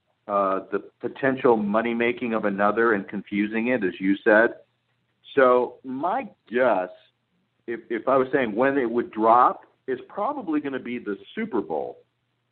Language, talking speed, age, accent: English, 155 wpm, 50-69, American